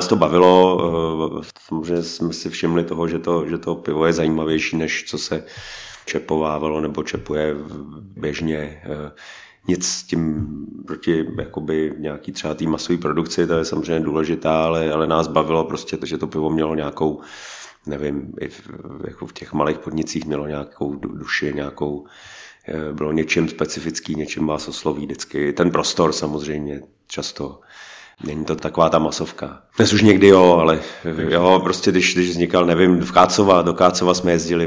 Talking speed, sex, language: 160 wpm, male, Czech